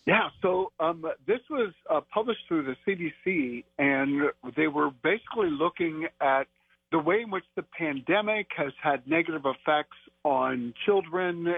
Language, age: English, 50-69